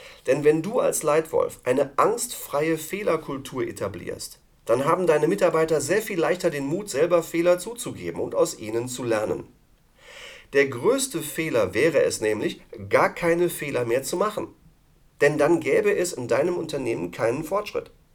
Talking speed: 155 wpm